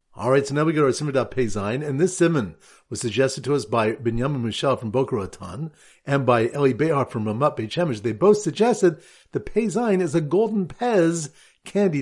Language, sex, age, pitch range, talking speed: English, male, 50-69, 125-195 Hz, 195 wpm